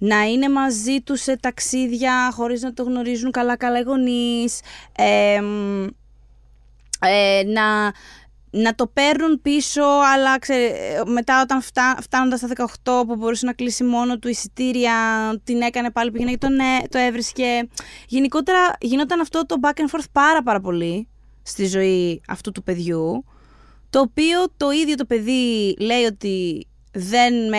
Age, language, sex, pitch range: 20-39, Greek, female, 195-260 Hz